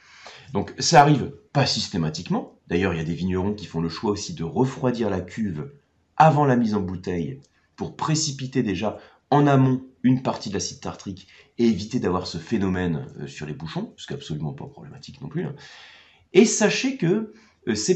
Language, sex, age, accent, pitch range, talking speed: French, male, 30-49, French, 90-145 Hz, 185 wpm